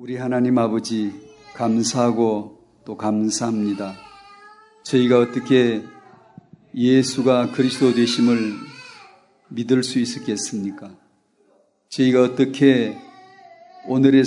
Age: 40-59